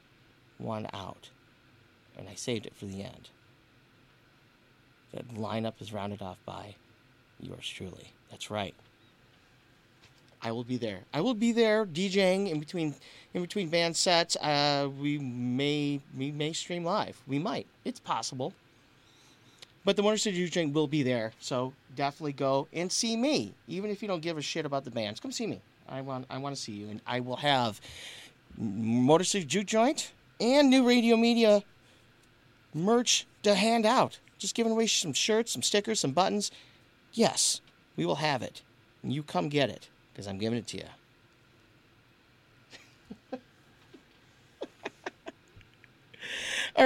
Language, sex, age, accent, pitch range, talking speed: English, male, 40-59, American, 120-200 Hz, 155 wpm